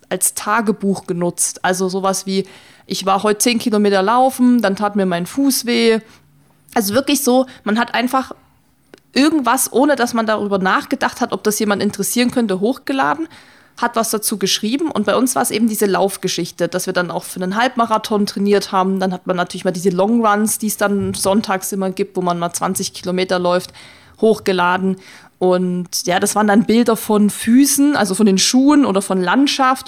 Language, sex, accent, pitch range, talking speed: German, female, German, 195-240 Hz, 190 wpm